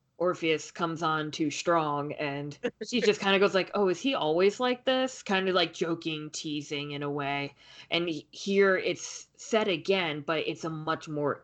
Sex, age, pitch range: female, 20-39, 145-185 Hz